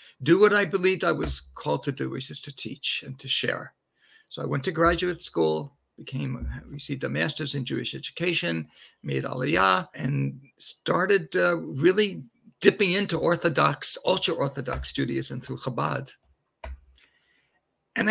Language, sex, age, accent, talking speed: English, male, 60-79, American, 145 wpm